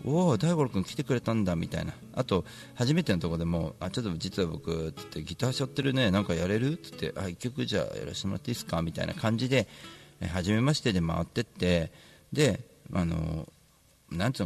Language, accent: Japanese, native